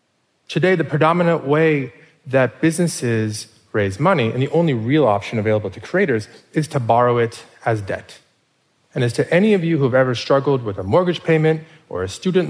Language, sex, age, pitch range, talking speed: English, male, 30-49, 115-160 Hz, 185 wpm